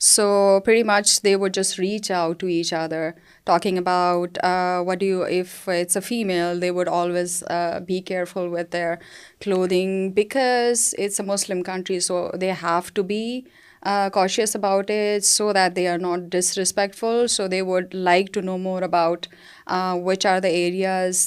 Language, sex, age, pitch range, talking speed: Urdu, female, 20-39, 175-195 Hz, 180 wpm